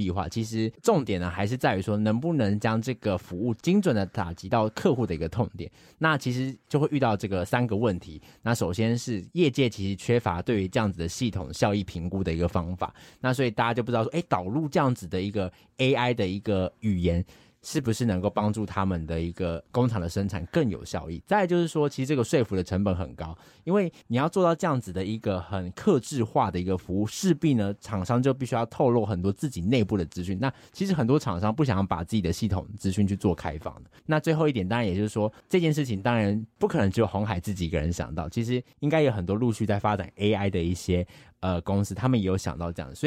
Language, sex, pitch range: Chinese, male, 95-125 Hz